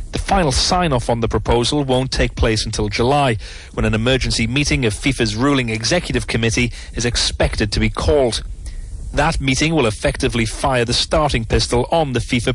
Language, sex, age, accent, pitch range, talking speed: English, male, 30-49, British, 110-145 Hz, 170 wpm